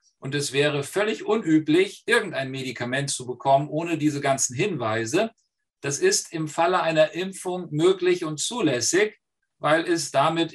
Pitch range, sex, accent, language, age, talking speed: 135-210 Hz, male, German, German, 50-69, 140 wpm